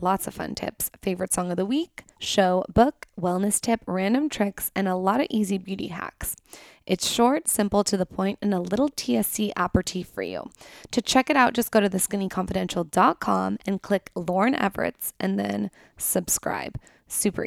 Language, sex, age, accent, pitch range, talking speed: English, female, 20-39, American, 185-235 Hz, 175 wpm